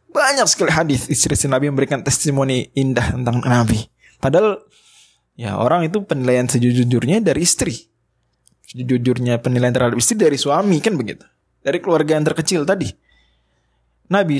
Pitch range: 125-165 Hz